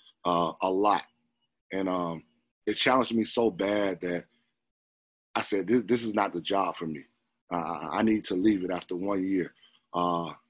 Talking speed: 175 wpm